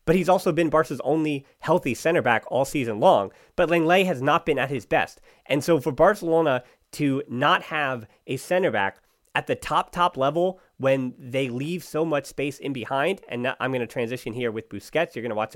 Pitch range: 120-160 Hz